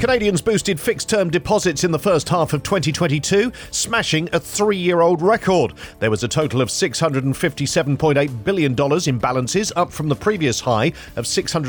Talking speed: 150 wpm